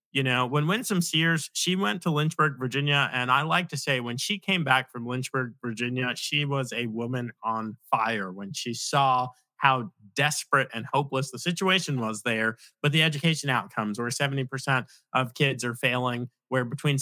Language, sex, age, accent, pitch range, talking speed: English, male, 30-49, American, 125-165 Hz, 180 wpm